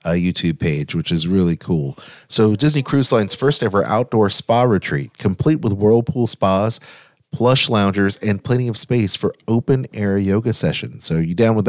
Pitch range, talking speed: 90-120 Hz, 180 wpm